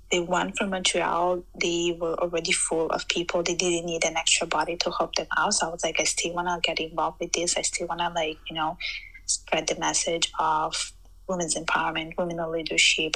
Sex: female